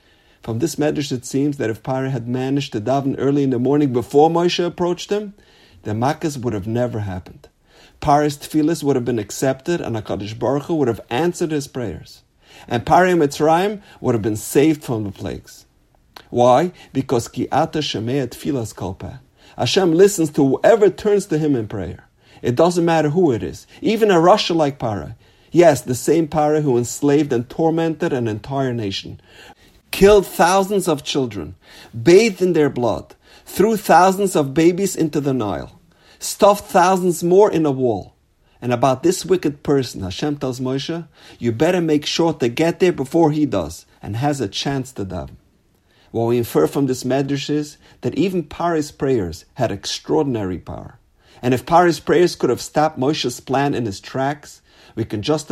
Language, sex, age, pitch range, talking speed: English, male, 50-69, 120-165 Hz, 175 wpm